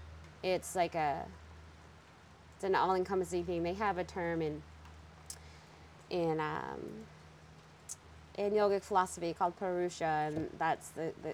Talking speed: 120 wpm